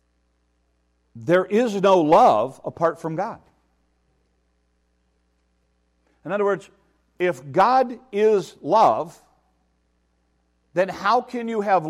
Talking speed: 95 wpm